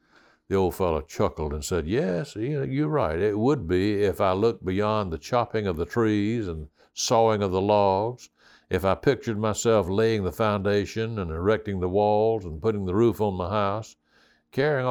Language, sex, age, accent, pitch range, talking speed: English, male, 60-79, American, 85-110 Hz, 180 wpm